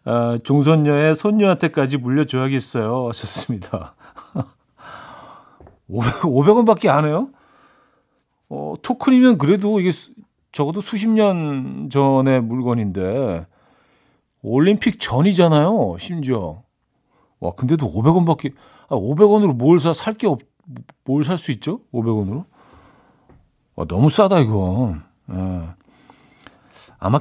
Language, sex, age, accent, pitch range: Korean, male, 40-59, native, 125-175 Hz